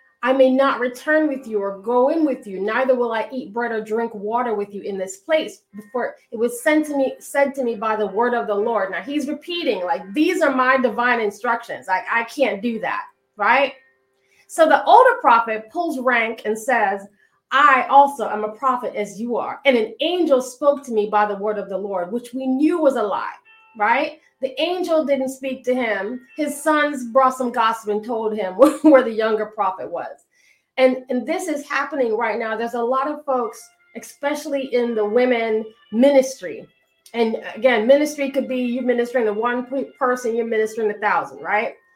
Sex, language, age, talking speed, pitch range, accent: female, English, 30-49, 200 wpm, 220-275 Hz, American